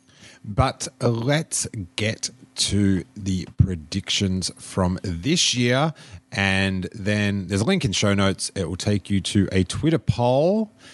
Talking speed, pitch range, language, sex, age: 135 wpm, 90-125 Hz, English, male, 30-49